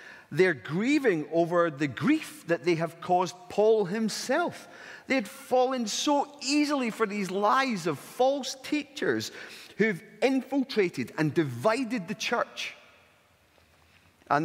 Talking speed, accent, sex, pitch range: 120 wpm, British, male, 140-215 Hz